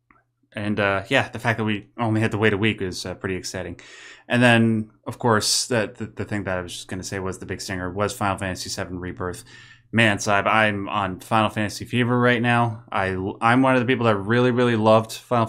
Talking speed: 235 wpm